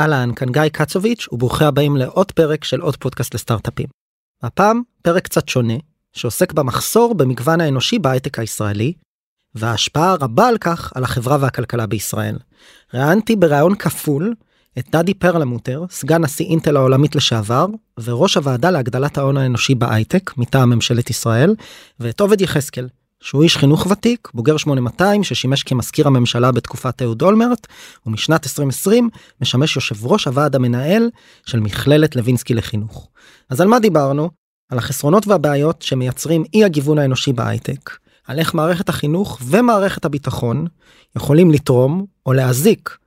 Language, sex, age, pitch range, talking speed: Hebrew, male, 20-39, 125-170 Hz, 135 wpm